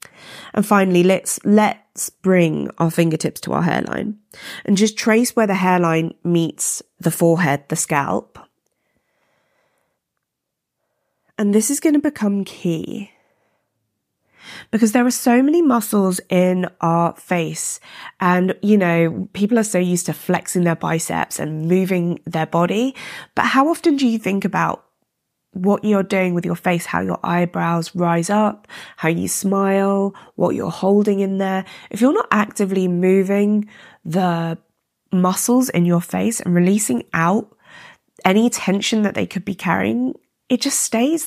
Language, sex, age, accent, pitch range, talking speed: English, female, 20-39, British, 175-225 Hz, 145 wpm